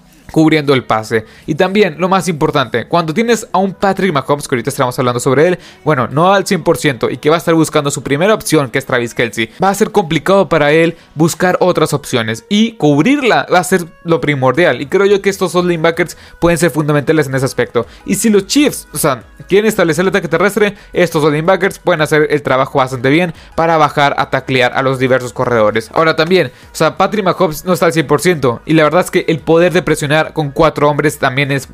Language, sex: Spanish, male